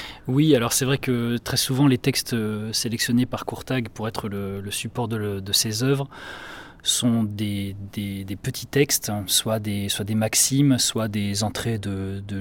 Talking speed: 180 wpm